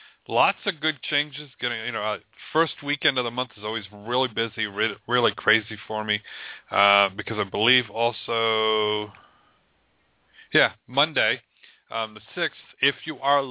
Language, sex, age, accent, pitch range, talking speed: English, male, 40-59, American, 105-140 Hz, 140 wpm